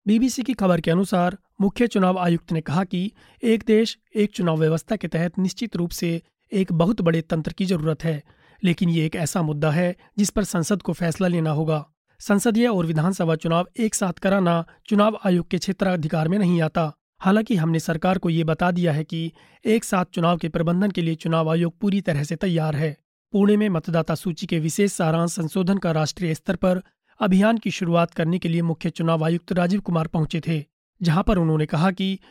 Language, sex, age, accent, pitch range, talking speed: Hindi, male, 30-49, native, 165-200 Hz, 200 wpm